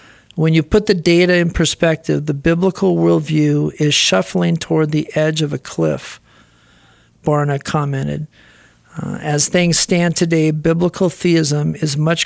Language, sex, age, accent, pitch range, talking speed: English, male, 50-69, American, 140-160 Hz, 140 wpm